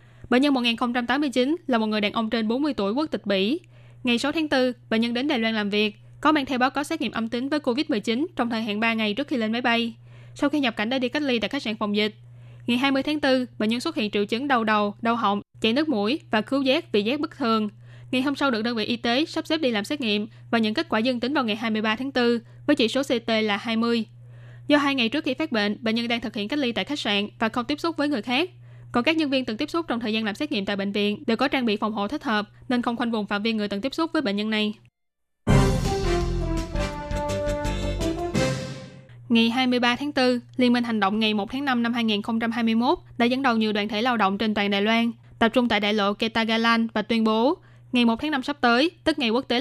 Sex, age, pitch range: female, 10-29, 210-260 Hz